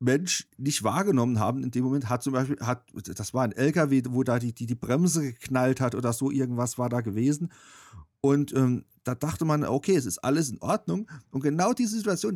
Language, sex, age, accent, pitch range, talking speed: German, male, 40-59, German, 125-170 Hz, 215 wpm